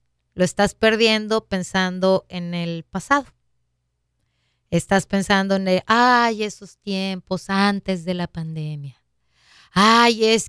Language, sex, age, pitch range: Spanish, female, 30-49, 175-220 Hz